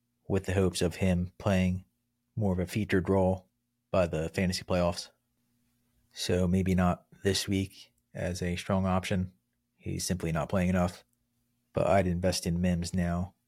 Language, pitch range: English, 90-105 Hz